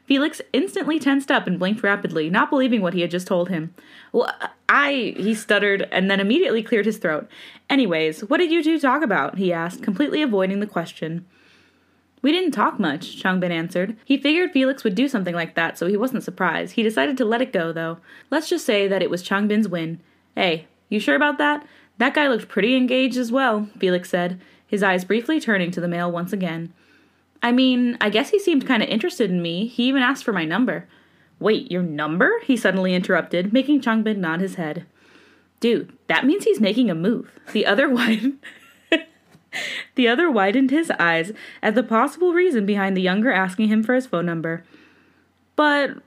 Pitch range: 185-270 Hz